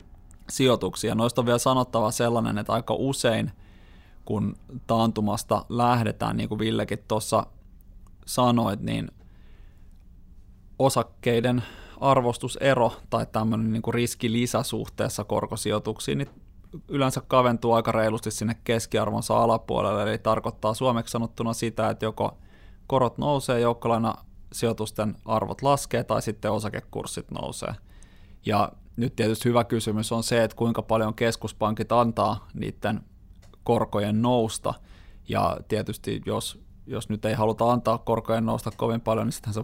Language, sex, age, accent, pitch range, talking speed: Finnish, male, 20-39, native, 105-120 Hz, 120 wpm